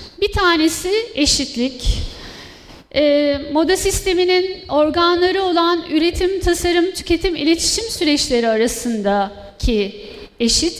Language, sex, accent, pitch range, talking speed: Turkish, female, native, 260-350 Hz, 85 wpm